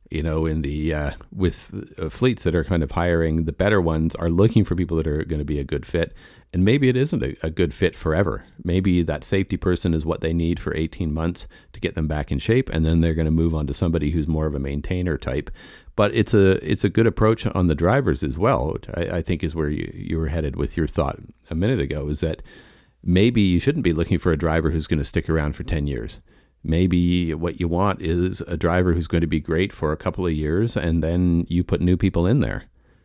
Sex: male